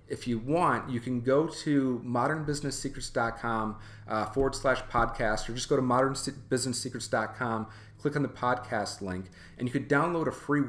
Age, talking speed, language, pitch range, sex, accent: 30-49, 165 wpm, English, 105-135 Hz, male, American